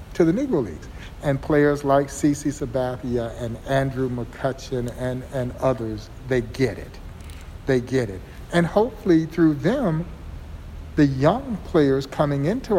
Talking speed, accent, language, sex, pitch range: 140 wpm, American, English, male, 115-145 Hz